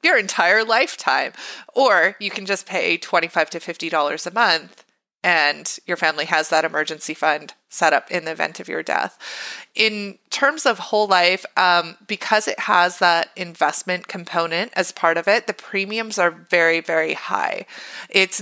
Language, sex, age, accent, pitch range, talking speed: English, female, 20-39, American, 170-205 Hz, 170 wpm